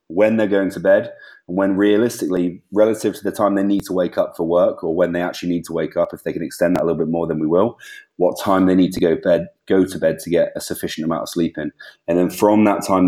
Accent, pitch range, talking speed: British, 80-95 Hz, 280 wpm